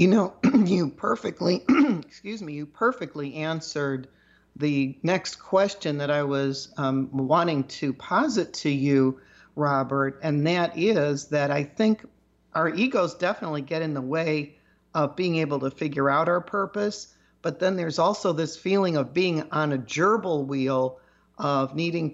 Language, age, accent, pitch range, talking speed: English, 50-69, American, 145-180 Hz, 155 wpm